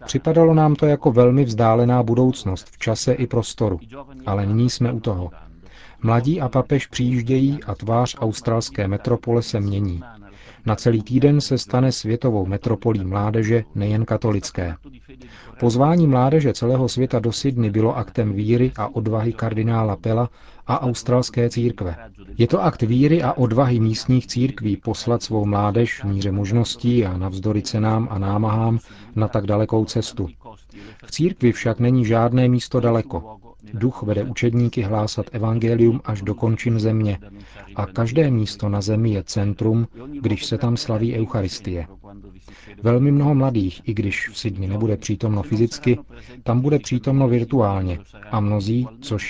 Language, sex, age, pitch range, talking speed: Czech, male, 40-59, 105-125 Hz, 145 wpm